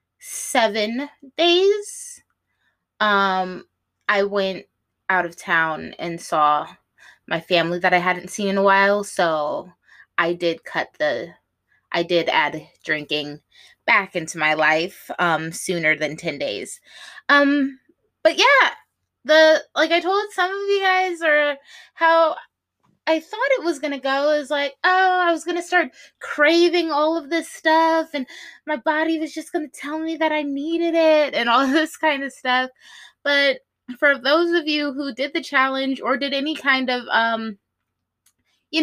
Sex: female